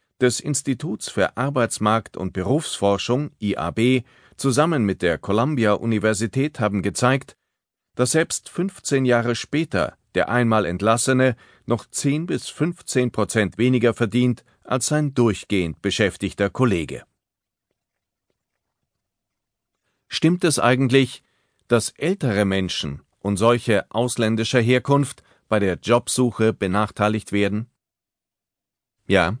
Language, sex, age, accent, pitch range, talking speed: German, male, 40-59, German, 100-130 Hz, 100 wpm